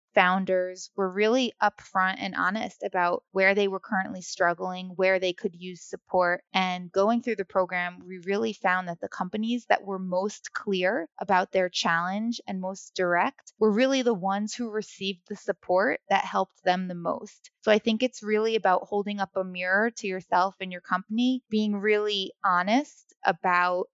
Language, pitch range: English, 185-210 Hz